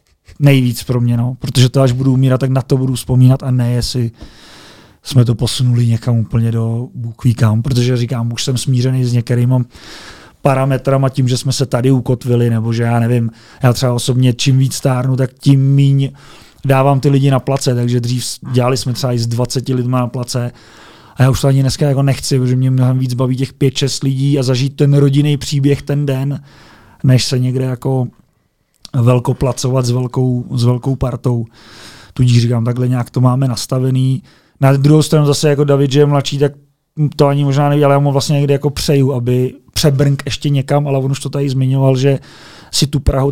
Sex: male